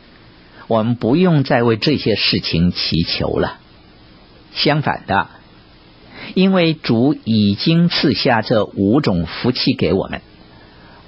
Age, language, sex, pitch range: 50-69, Chinese, male, 85-140 Hz